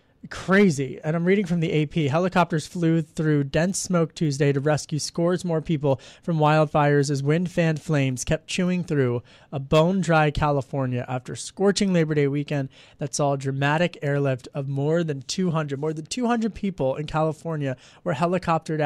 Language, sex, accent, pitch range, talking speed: English, male, American, 150-205 Hz, 170 wpm